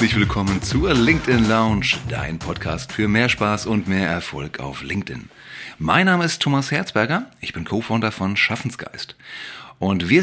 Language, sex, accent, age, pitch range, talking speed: German, male, German, 40-59, 85-115 Hz, 145 wpm